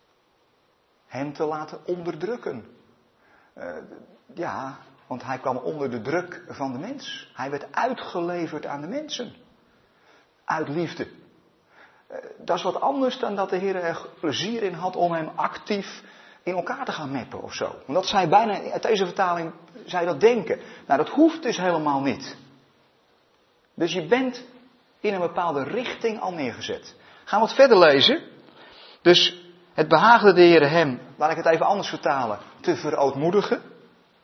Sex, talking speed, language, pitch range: male, 155 wpm, Dutch, 165-235 Hz